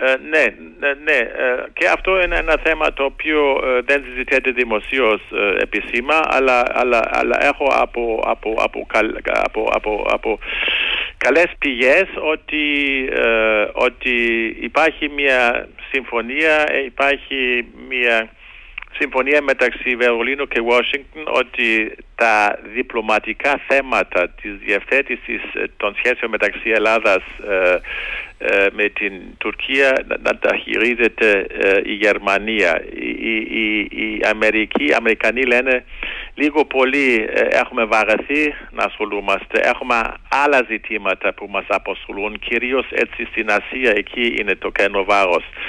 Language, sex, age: Greek, male, 60-79